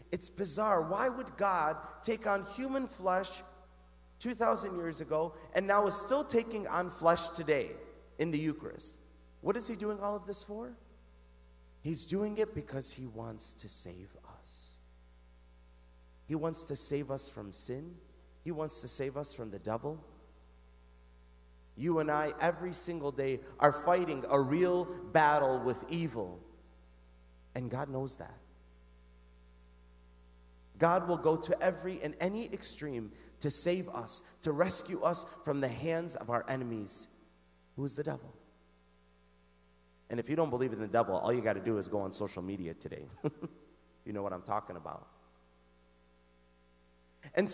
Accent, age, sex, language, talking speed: American, 40-59, male, English, 155 wpm